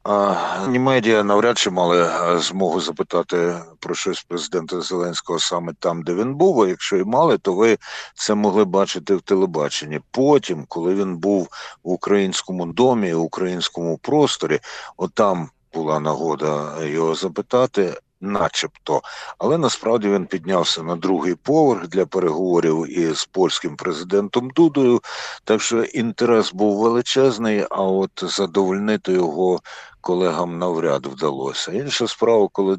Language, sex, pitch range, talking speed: Ukrainian, male, 85-105 Hz, 130 wpm